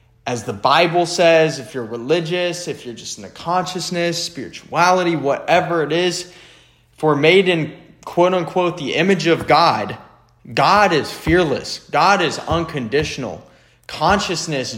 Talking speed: 135 wpm